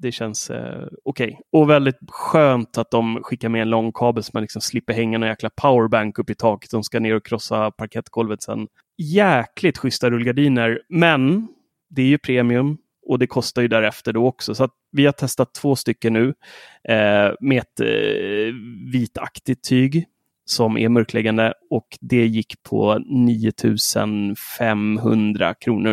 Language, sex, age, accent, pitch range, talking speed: Swedish, male, 30-49, native, 110-130 Hz, 165 wpm